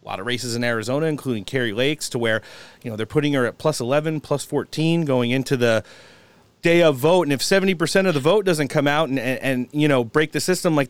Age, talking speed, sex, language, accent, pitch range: 30-49, 250 wpm, male, English, American, 125-160 Hz